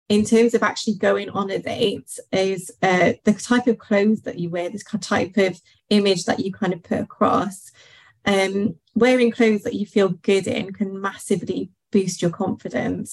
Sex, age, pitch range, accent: female, 20-39, 195-225 Hz, British